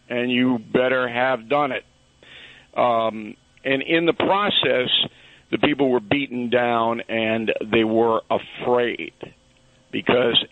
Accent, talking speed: American, 120 wpm